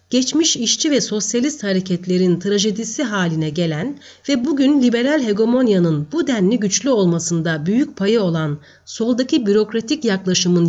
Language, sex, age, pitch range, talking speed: Turkish, female, 40-59, 175-245 Hz, 125 wpm